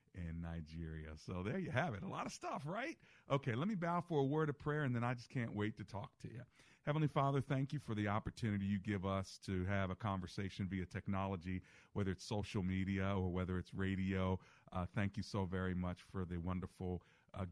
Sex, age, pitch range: male, 40-59, 90-105 Hz